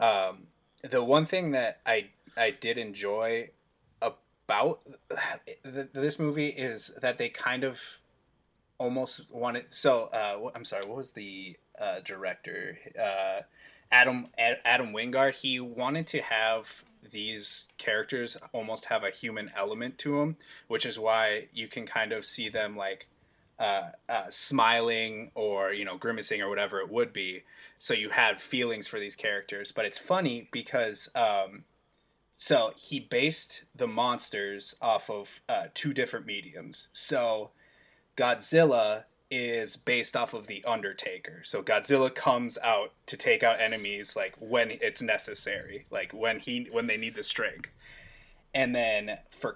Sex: male